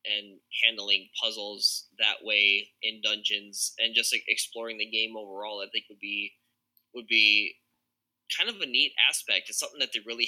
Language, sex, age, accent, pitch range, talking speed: English, male, 10-29, American, 100-115 Hz, 175 wpm